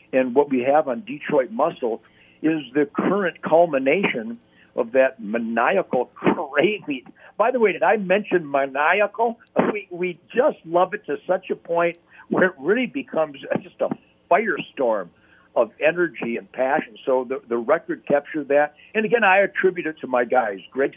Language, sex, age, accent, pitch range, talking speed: English, male, 60-79, American, 135-210 Hz, 165 wpm